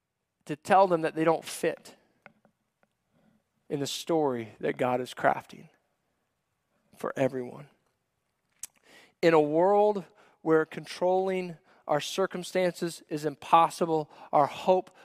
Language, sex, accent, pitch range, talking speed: English, male, American, 135-165 Hz, 110 wpm